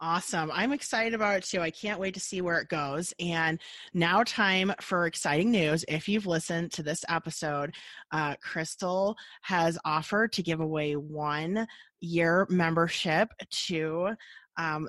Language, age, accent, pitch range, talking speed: English, 20-39, American, 160-210 Hz, 155 wpm